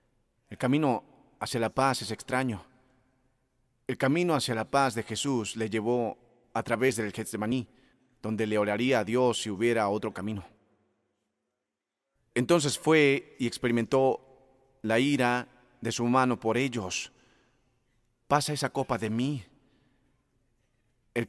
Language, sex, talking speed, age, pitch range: Spanish, male, 130 wpm, 40-59, 115-130 Hz